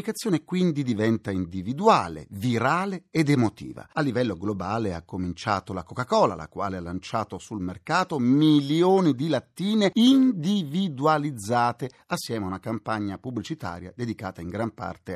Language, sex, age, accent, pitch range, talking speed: Italian, male, 40-59, native, 100-155 Hz, 125 wpm